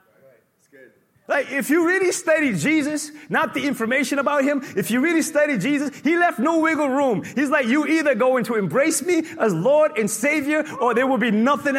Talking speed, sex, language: 195 wpm, male, English